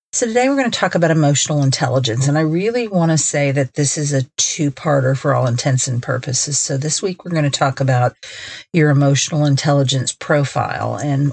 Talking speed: 200 wpm